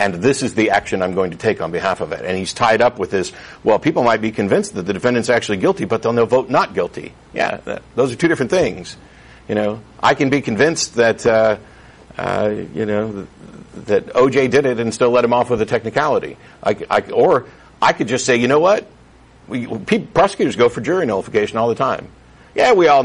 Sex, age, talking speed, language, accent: male, 60-79, 230 wpm, English, American